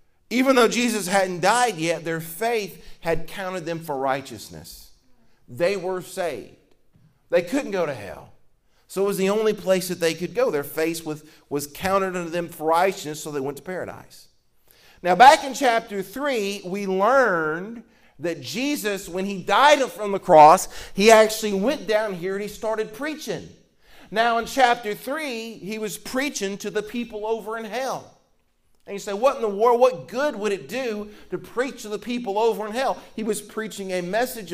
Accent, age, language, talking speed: American, 40-59, English, 185 wpm